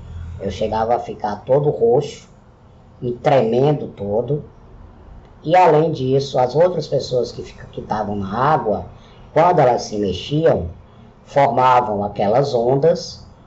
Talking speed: 115 wpm